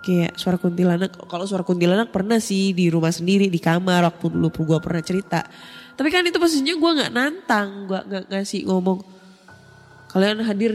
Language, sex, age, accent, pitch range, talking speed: Indonesian, female, 10-29, native, 170-220 Hz, 165 wpm